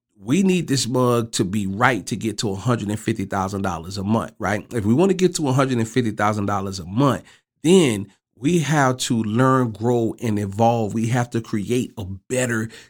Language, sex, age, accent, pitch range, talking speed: English, male, 40-59, American, 110-145 Hz, 220 wpm